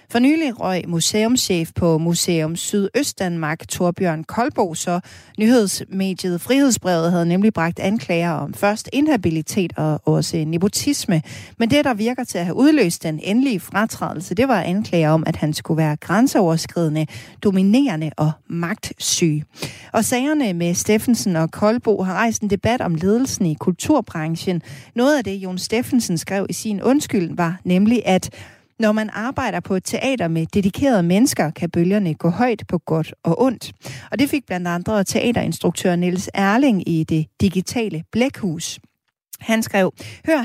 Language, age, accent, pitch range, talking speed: Danish, 40-59, native, 170-230 Hz, 155 wpm